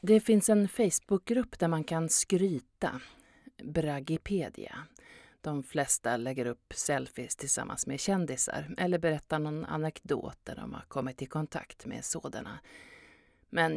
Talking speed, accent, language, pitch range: 130 wpm, native, Swedish, 135-175 Hz